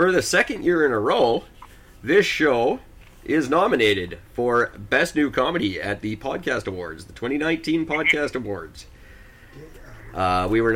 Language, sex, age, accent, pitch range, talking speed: English, male, 30-49, American, 100-125 Hz, 145 wpm